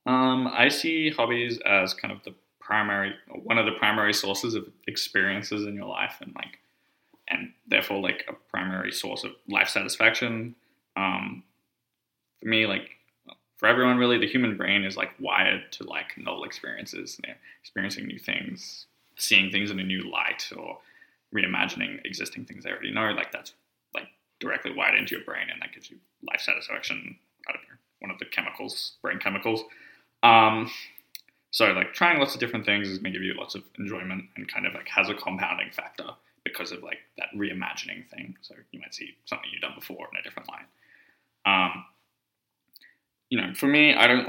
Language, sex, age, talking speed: English, male, 20-39, 185 wpm